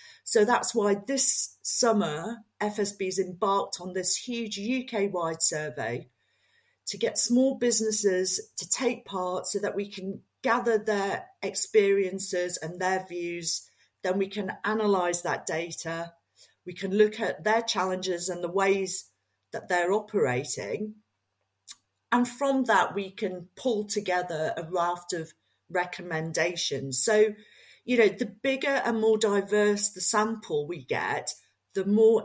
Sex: female